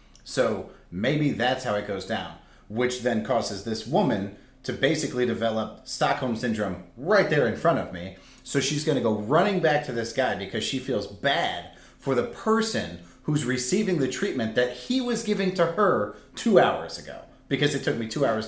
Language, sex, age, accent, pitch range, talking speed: English, male, 30-49, American, 110-140 Hz, 190 wpm